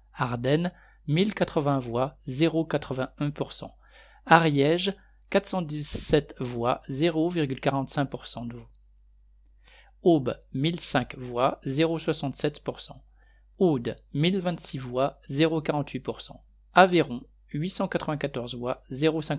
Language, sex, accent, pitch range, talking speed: French, male, French, 130-160 Hz, 50 wpm